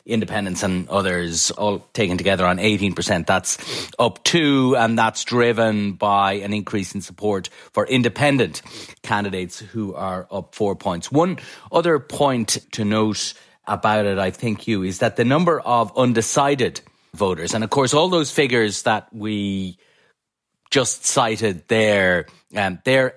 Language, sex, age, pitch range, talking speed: English, male, 30-49, 100-130 Hz, 150 wpm